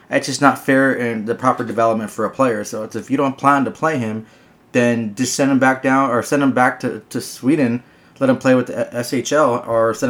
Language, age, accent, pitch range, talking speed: English, 20-39, American, 110-130 Hz, 245 wpm